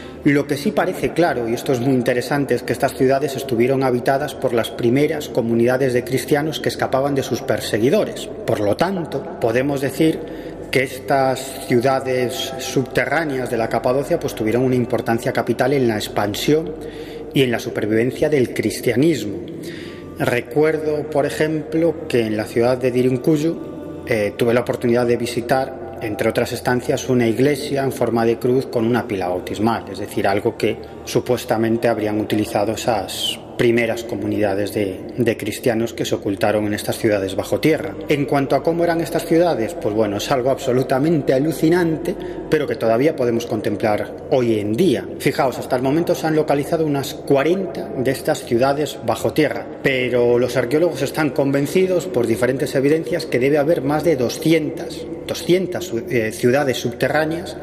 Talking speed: 160 wpm